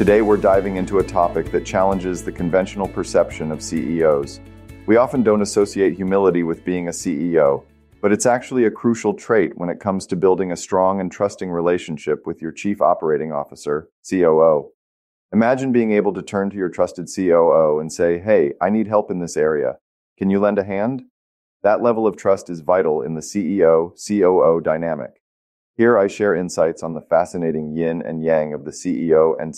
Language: English